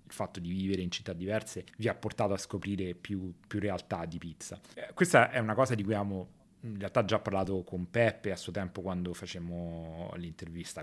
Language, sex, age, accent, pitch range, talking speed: Italian, male, 30-49, native, 90-110 Hz, 205 wpm